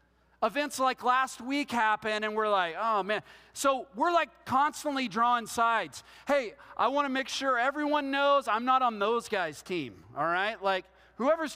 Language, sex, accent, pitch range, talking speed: English, male, American, 220-285 Hz, 175 wpm